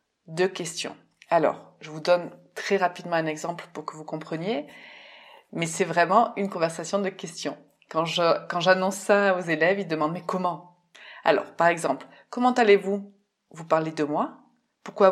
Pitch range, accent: 170-215 Hz, French